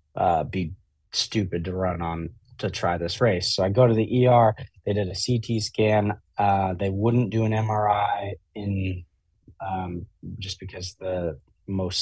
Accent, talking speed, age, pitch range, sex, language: American, 165 wpm, 30-49, 90-110 Hz, male, English